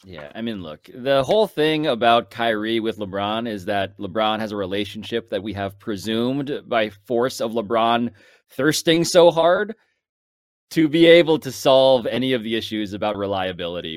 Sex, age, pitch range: male, 20-39, 105-170 Hz